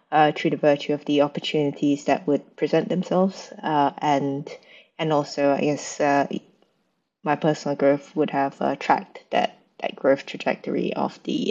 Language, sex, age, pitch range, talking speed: English, female, 20-39, 145-170 Hz, 160 wpm